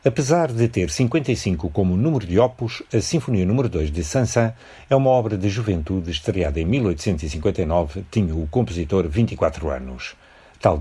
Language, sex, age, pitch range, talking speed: Portuguese, male, 60-79, 80-110 Hz, 155 wpm